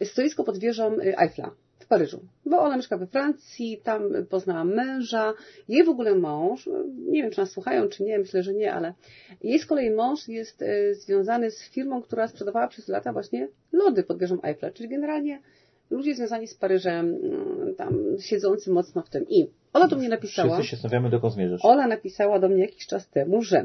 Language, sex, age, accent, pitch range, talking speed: Polish, female, 40-59, native, 190-295 Hz, 180 wpm